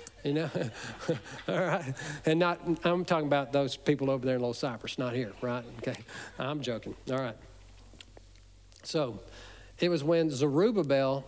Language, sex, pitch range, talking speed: English, male, 105-155 Hz, 155 wpm